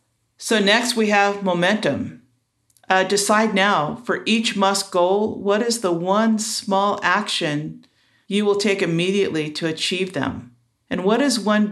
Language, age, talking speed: English, 50-69, 150 wpm